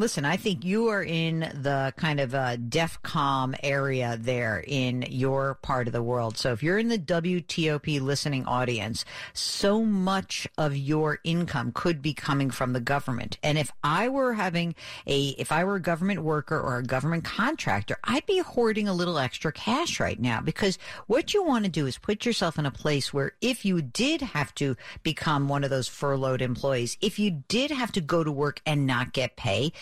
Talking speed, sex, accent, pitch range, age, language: 200 wpm, female, American, 135-200 Hz, 50-69, English